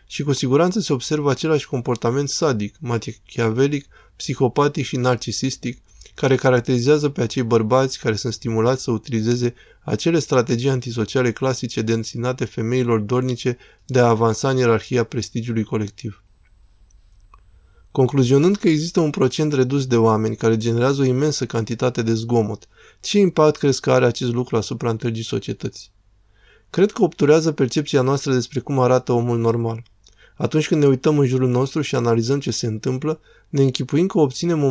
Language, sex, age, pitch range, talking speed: Romanian, male, 20-39, 115-140 Hz, 155 wpm